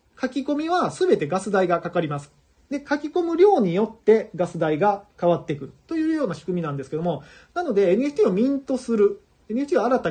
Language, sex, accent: Japanese, male, native